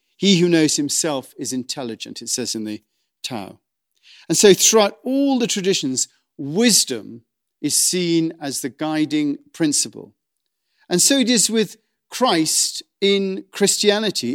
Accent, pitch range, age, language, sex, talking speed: British, 135-190 Hz, 50-69, English, male, 135 wpm